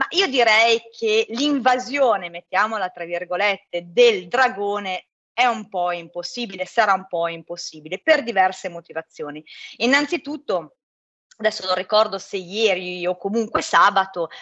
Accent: native